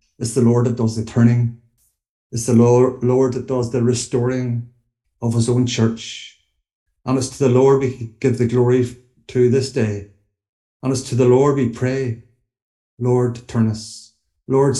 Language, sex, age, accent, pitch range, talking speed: English, male, 60-79, Irish, 110-125 Hz, 165 wpm